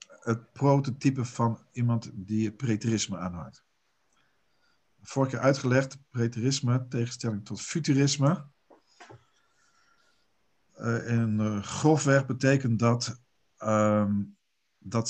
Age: 50-69